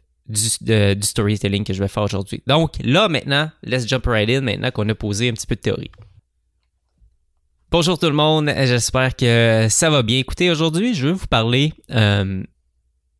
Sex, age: male, 20-39